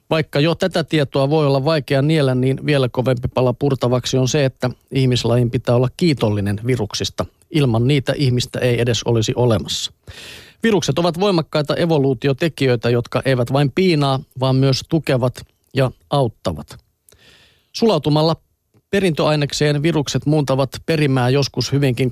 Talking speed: 130 wpm